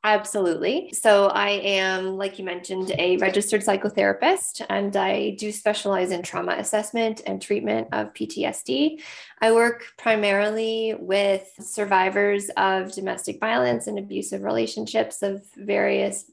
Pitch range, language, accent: 185-215 Hz, English, American